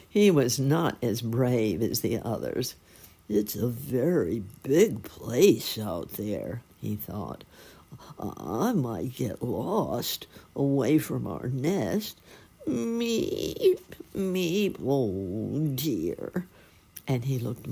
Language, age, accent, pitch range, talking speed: English, 60-79, American, 110-155 Hz, 110 wpm